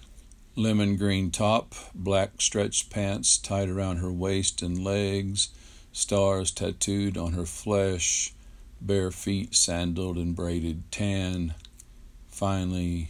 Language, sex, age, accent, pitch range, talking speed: English, male, 50-69, American, 80-95 Hz, 110 wpm